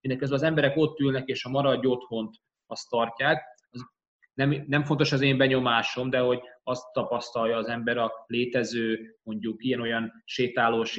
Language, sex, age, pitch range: Hungarian, male, 20-39, 115-150 Hz